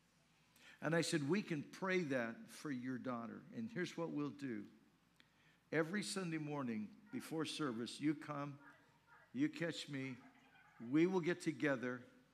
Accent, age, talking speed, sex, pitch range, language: American, 60-79, 140 wpm, male, 135-180 Hz, English